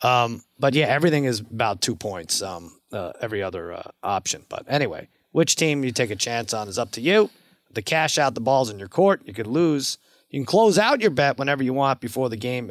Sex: male